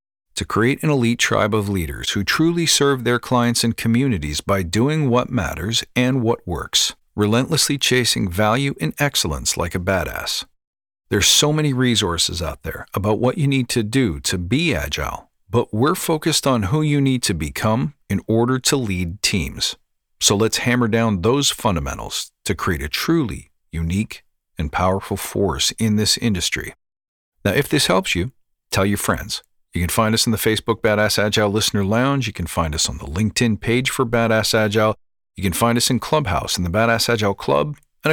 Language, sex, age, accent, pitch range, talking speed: English, male, 50-69, American, 100-130 Hz, 185 wpm